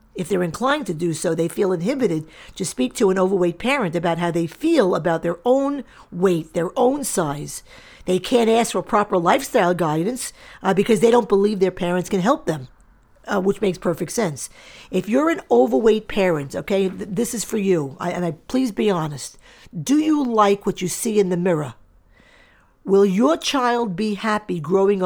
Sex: female